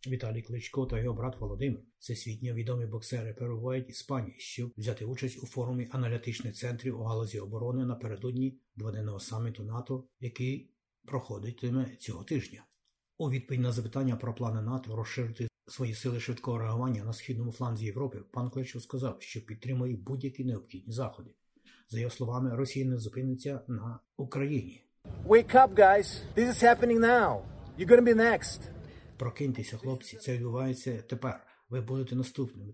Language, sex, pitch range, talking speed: Ukrainian, male, 115-130 Hz, 125 wpm